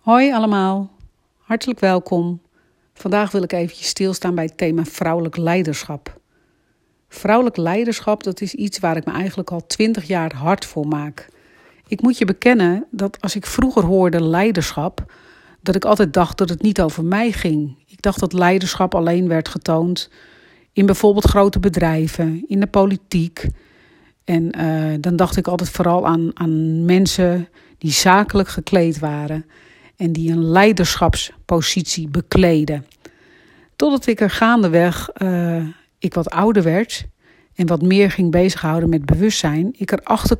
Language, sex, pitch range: Dutch, female, 165-200 Hz